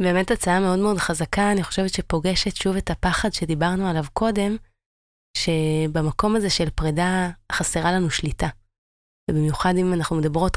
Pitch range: 150-190 Hz